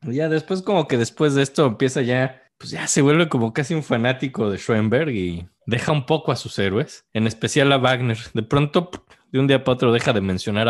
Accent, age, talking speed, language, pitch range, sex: Mexican, 20-39, 225 wpm, Spanish, 110-145 Hz, male